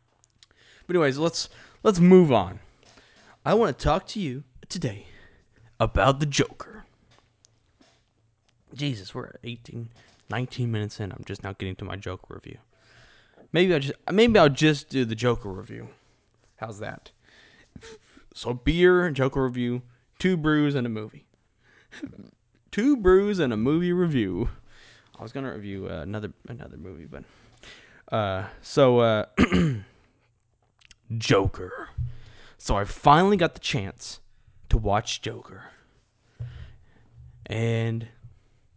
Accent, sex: American, male